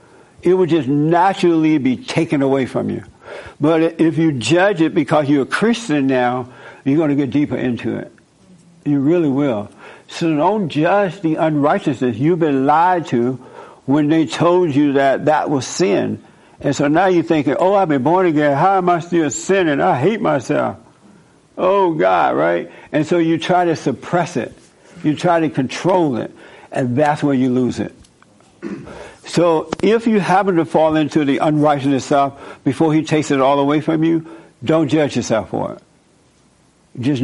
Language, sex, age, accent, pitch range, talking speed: English, male, 60-79, American, 140-170 Hz, 175 wpm